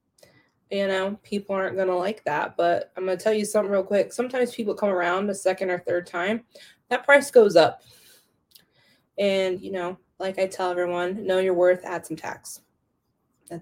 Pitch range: 175-205 Hz